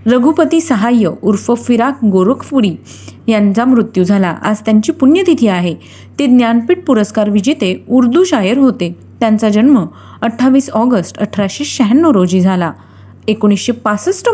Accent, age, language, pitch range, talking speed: native, 30-49, Marathi, 200-280 Hz, 115 wpm